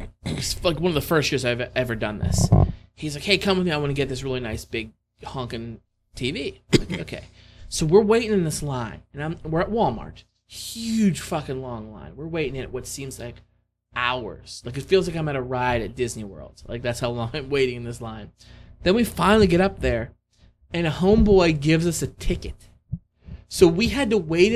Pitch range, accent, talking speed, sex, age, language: 110-170 Hz, American, 215 wpm, male, 20-39, English